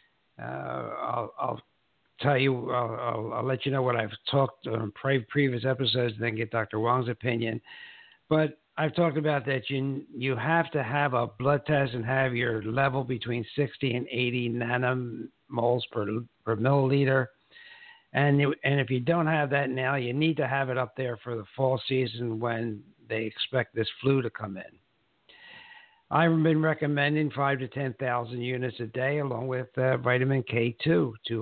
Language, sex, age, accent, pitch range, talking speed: English, male, 60-79, American, 120-150 Hz, 180 wpm